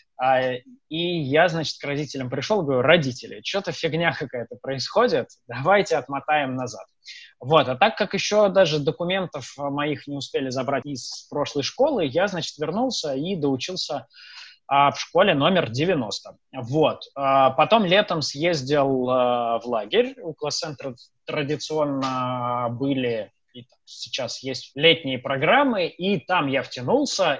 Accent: native